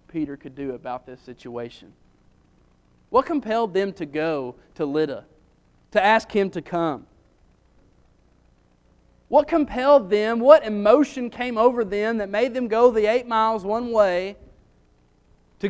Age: 30-49